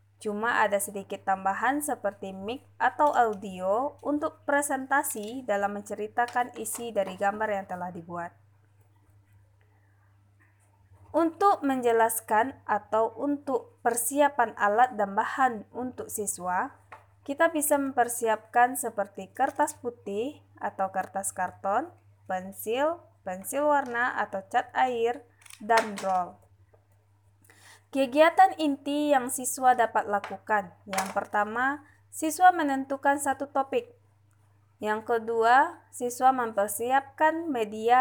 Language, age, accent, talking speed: Indonesian, 20-39, native, 100 wpm